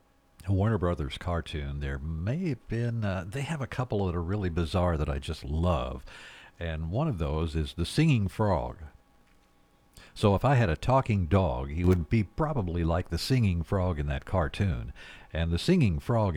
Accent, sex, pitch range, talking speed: American, male, 80-110 Hz, 185 wpm